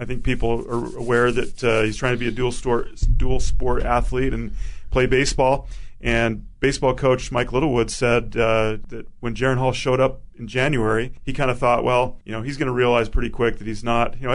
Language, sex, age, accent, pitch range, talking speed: English, male, 40-59, American, 115-130 Hz, 220 wpm